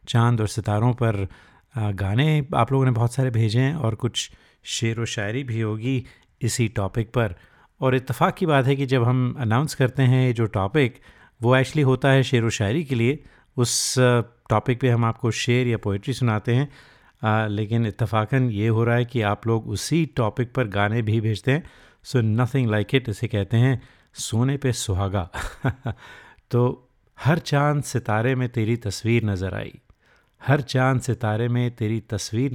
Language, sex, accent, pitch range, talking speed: Hindi, male, native, 105-130 Hz, 175 wpm